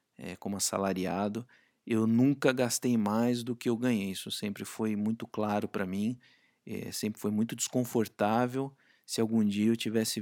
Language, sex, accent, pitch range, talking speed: Portuguese, male, Brazilian, 115-145 Hz, 165 wpm